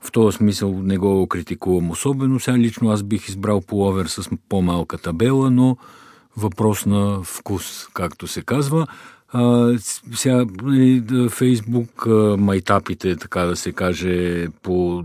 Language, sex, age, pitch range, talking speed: Bulgarian, male, 50-69, 90-115 Hz, 130 wpm